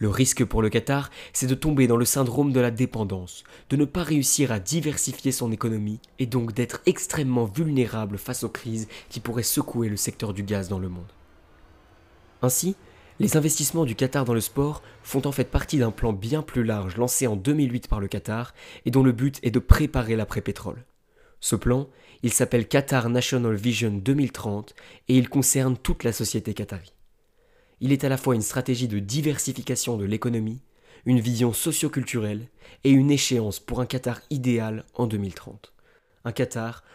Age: 20-39